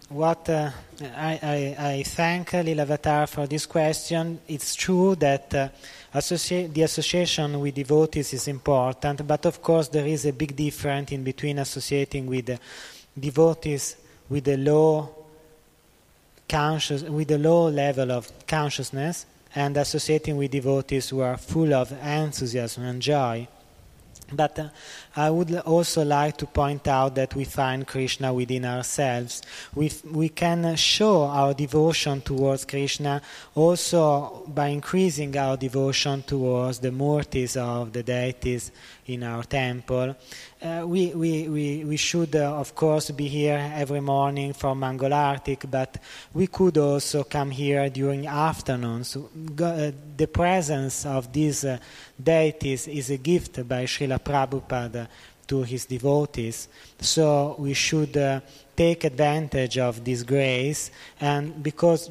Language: Italian